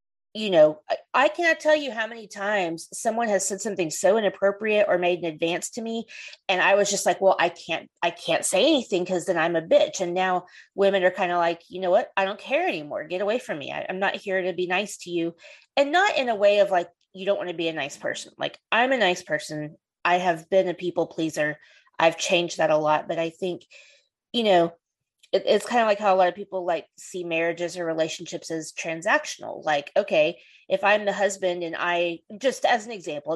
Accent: American